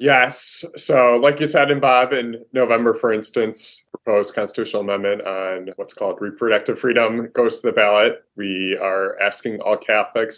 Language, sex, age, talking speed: English, male, 20-39, 160 wpm